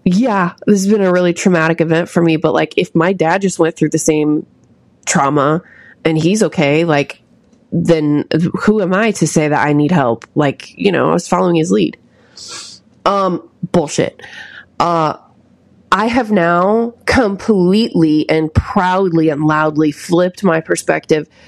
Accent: American